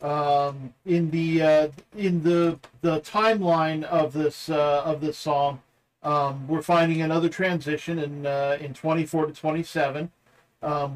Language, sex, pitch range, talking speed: English, male, 140-165 Hz, 140 wpm